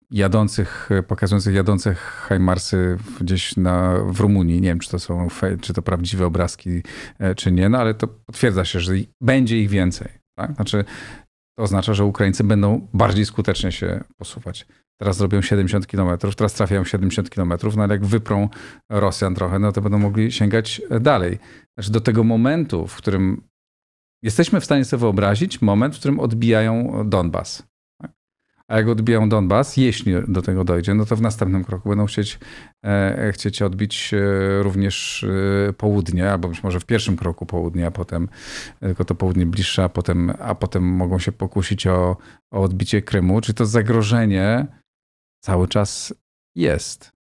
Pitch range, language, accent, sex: 95-110 Hz, Polish, native, male